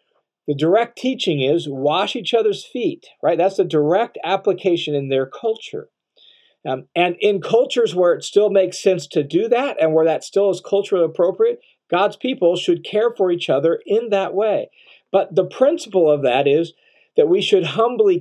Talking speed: 180 wpm